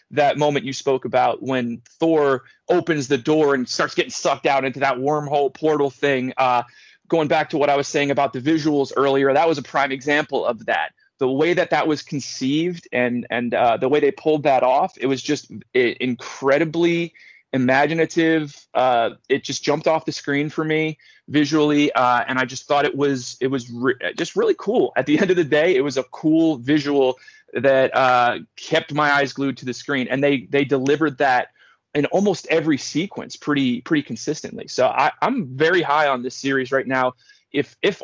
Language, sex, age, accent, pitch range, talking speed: English, male, 30-49, American, 135-165 Hz, 195 wpm